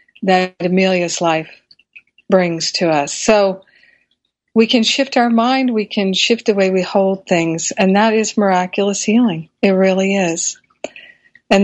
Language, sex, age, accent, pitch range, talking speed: English, female, 50-69, American, 185-220 Hz, 150 wpm